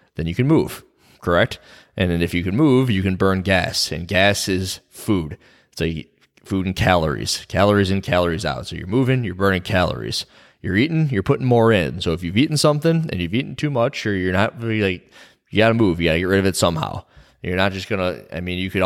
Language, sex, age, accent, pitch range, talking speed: English, male, 20-39, American, 90-105 Hz, 230 wpm